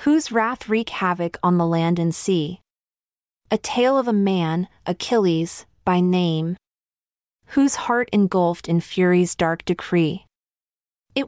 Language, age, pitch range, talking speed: English, 30-49, 170-220 Hz, 135 wpm